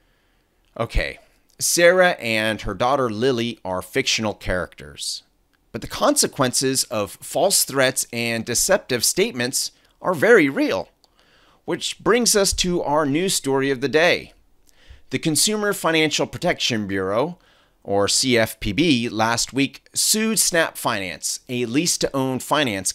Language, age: English, 30-49